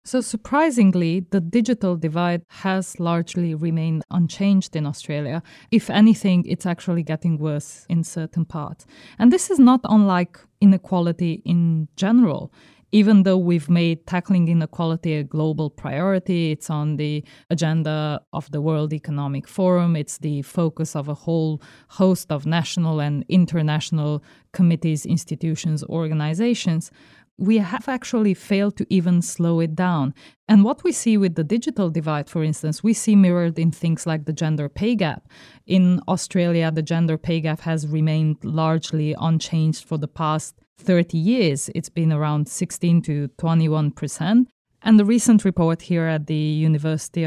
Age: 20-39